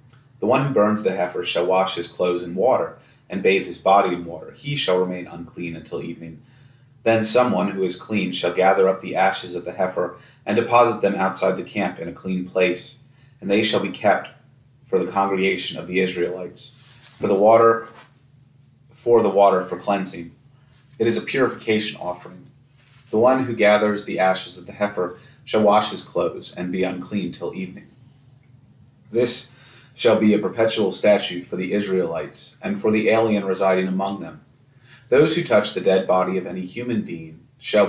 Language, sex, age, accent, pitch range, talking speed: English, male, 30-49, American, 90-130 Hz, 185 wpm